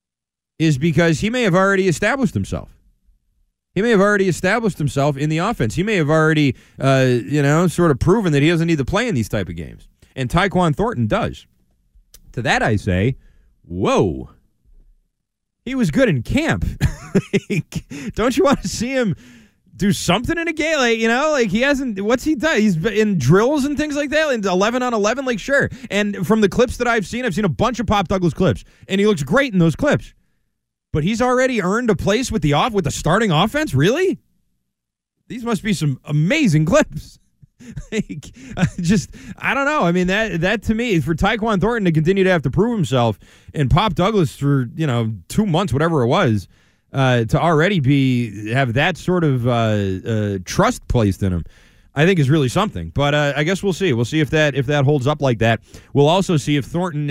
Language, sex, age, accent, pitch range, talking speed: English, male, 30-49, American, 135-200 Hz, 210 wpm